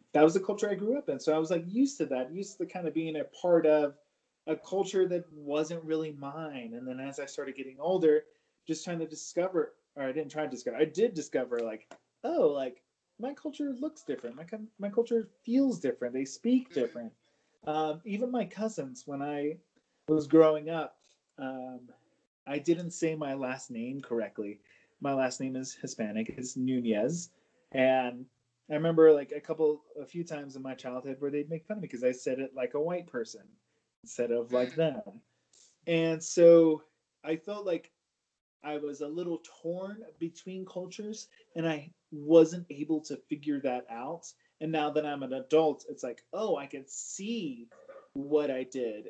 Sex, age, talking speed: male, 30-49, 185 wpm